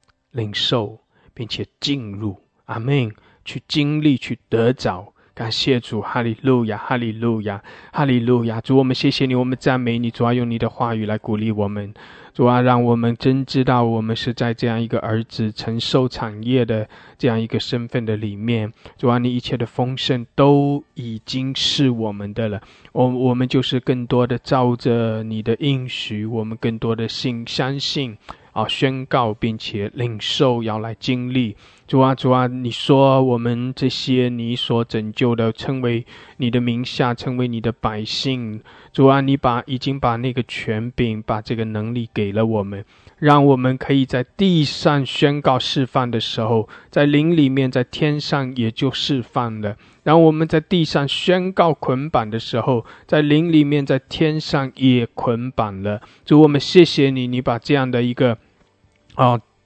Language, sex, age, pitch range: English, male, 20-39, 115-135 Hz